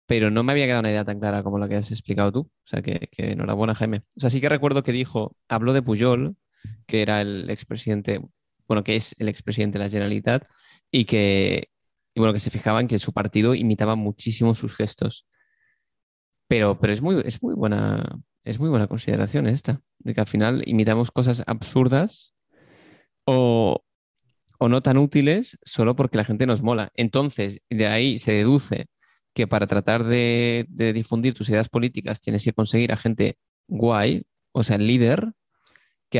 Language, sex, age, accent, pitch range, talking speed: Spanish, male, 20-39, Spanish, 105-125 Hz, 185 wpm